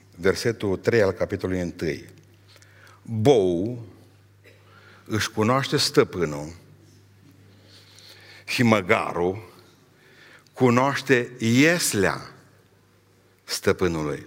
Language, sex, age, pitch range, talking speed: Romanian, male, 60-79, 95-115 Hz, 60 wpm